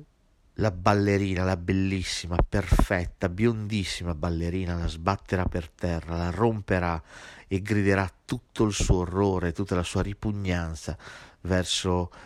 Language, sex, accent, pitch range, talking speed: Italian, male, native, 85-100 Hz, 120 wpm